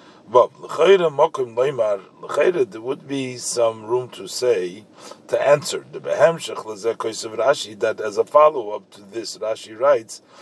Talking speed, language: 165 wpm, English